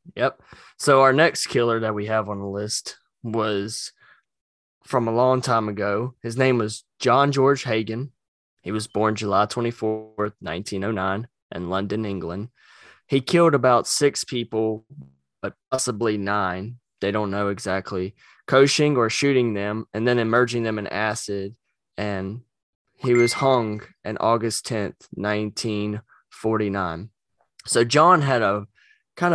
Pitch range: 100-120 Hz